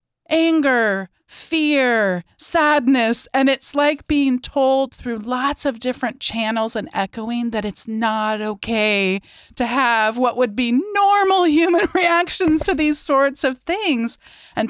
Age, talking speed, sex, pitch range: 40-59, 135 wpm, female, 215-275 Hz